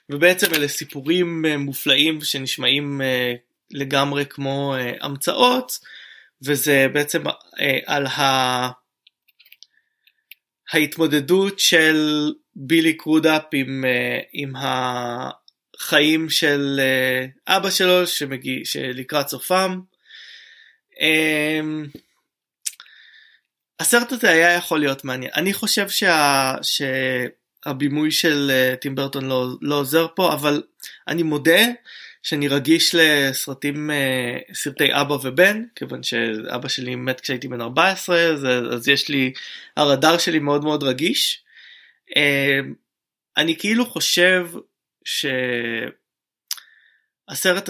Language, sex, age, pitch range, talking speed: Hebrew, male, 20-39, 135-170 Hz, 85 wpm